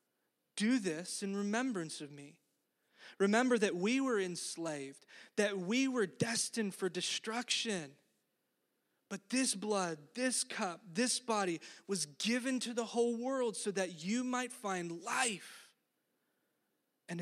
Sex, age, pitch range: male, 20-39, 180-240 Hz